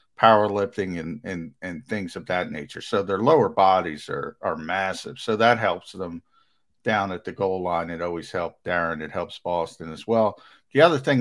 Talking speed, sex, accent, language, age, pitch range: 200 wpm, male, American, English, 50-69, 100-135 Hz